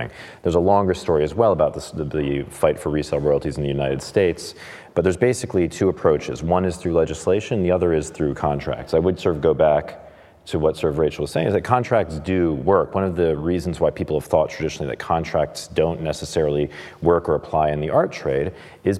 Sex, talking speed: male, 220 wpm